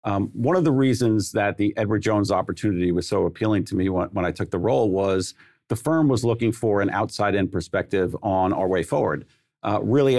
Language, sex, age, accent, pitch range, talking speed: English, male, 40-59, American, 100-125 Hz, 210 wpm